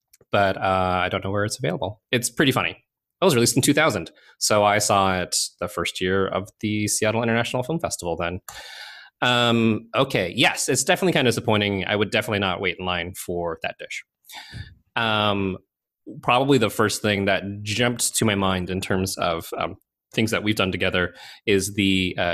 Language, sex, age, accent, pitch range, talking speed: English, male, 20-39, American, 95-125 Hz, 185 wpm